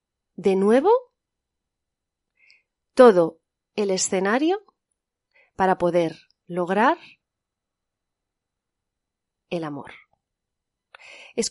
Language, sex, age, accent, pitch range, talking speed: Spanish, female, 30-49, Spanish, 175-245 Hz, 55 wpm